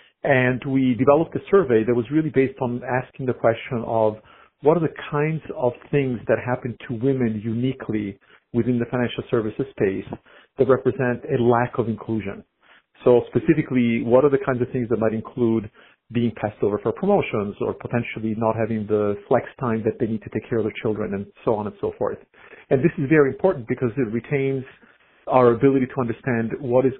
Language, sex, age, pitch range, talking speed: English, male, 50-69, 110-135 Hz, 195 wpm